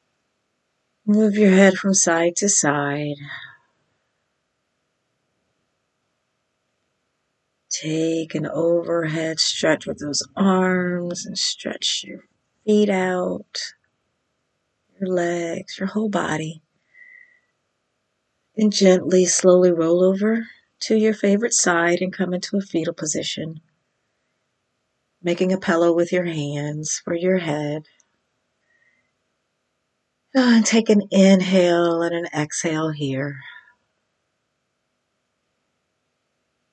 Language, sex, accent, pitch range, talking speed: English, female, American, 155-195 Hz, 90 wpm